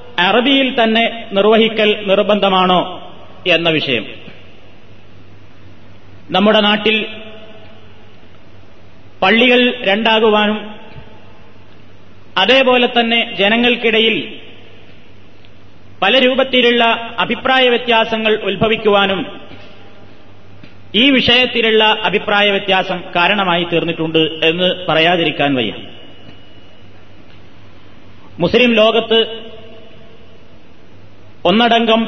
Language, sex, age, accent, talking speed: Malayalam, male, 30-49, native, 55 wpm